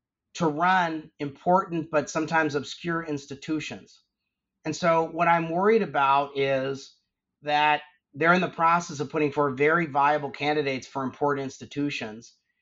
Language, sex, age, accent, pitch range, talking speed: English, male, 30-49, American, 140-170 Hz, 135 wpm